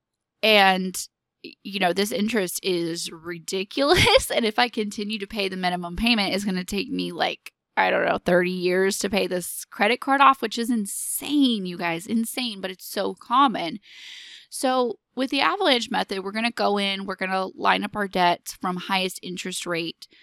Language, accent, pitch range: English, American, 175-215 Hz